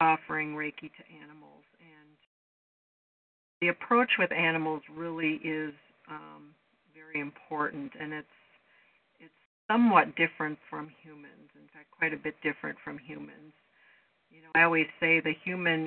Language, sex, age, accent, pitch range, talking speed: English, female, 50-69, American, 155-170 Hz, 135 wpm